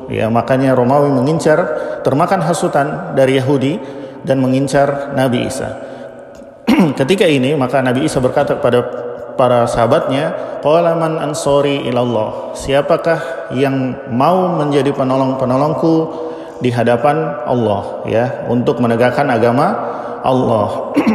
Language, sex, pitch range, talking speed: Indonesian, male, 120-150 Hz, 100 wpm